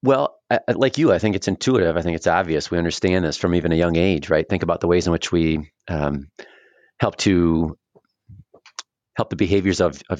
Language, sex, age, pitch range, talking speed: English, male, 30-49, 80-95 Hz, 220 wpm